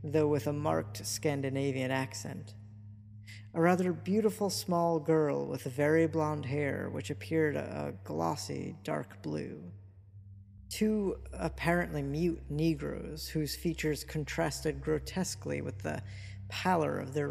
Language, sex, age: English, female, 50-69